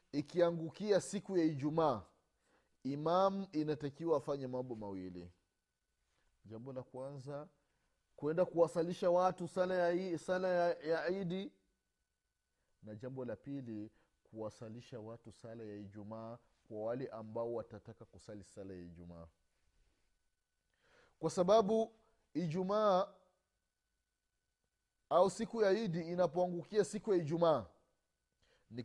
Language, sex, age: Swahili, male, 30-49